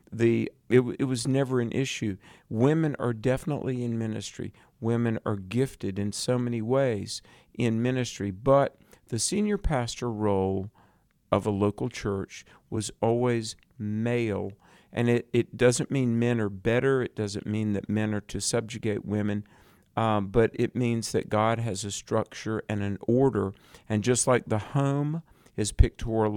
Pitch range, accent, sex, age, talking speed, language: 105-125 Hz, American, male, 50-69, 155 wpm, English